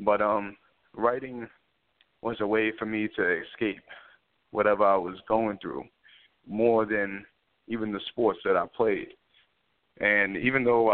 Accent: American